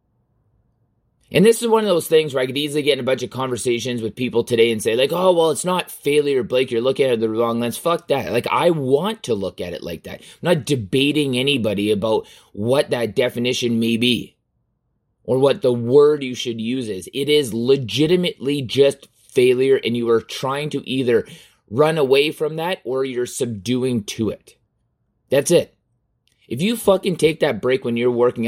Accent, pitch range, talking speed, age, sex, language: American, 120-150 Hz, 200 wpm, 20-39, male, English